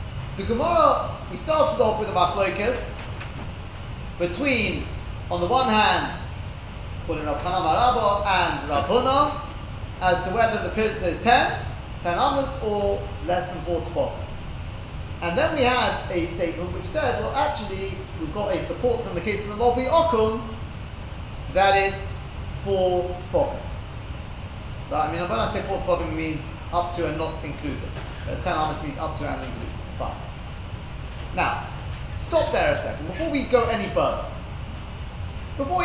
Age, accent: 30-49, British